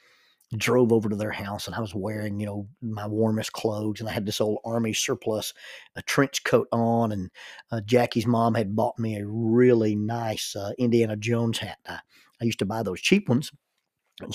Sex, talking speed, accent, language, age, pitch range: male, 200 wpm, American, English, 40-59, 110-125 Hz